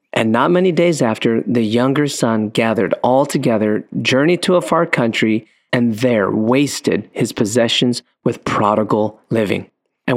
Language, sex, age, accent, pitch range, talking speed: English, male, 40-59, American, 110-135 Hz, 150 wpm